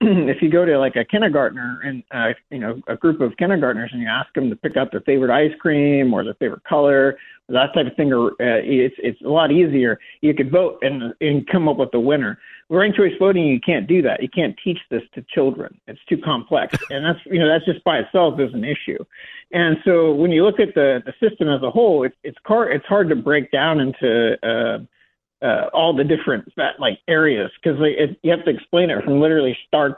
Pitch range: 135-170 Hz